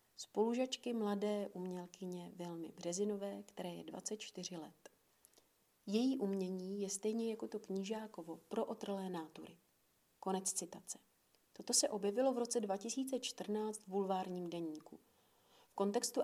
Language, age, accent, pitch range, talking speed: Czech, 40-59, native, 185-215 Hz, 120 wpm